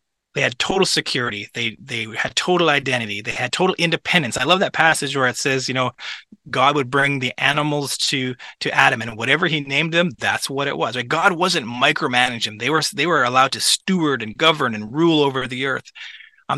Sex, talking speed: male, 210 wpm